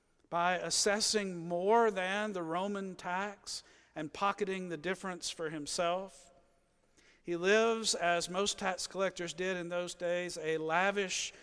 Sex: male